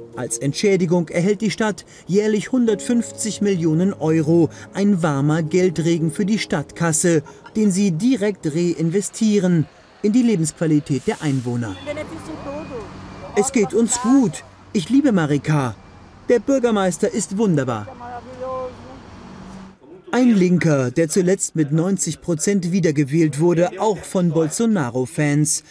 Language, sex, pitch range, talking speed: German, male, 155-210 Hz, 110 wpm